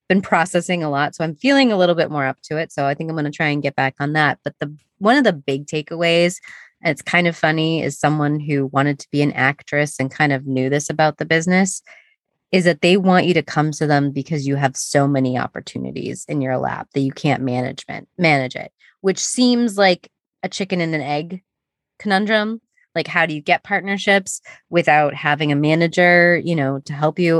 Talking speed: 220 wpm